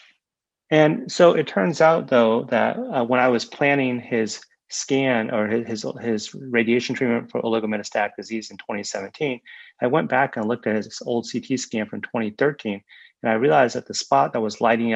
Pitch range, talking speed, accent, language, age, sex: 105-130 Hz, 185 wpm, American, English, 30-49, male